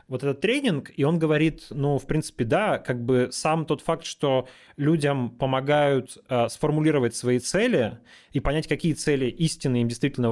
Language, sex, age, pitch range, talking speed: Russian, male, 20-39, 120-150 Hz, 170 wpm